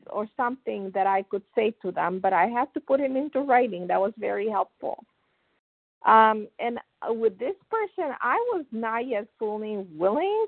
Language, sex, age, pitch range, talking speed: English, female, 50-69, 190-250 Hz, 180 wpm